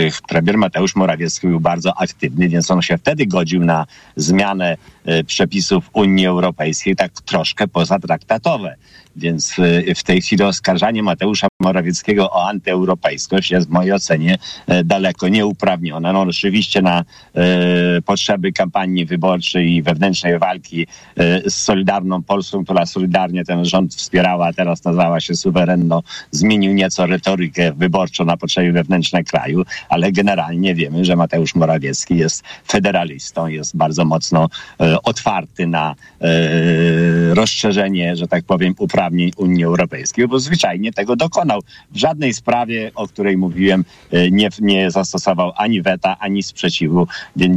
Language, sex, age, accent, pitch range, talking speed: Polish, male, 50-69, native, 85-100 Hz, 135 wpm